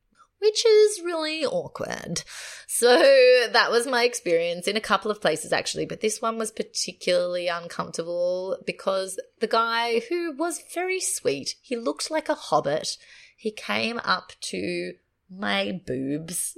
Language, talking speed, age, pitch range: English, 140 wpm, 30-49, 165-220 Hz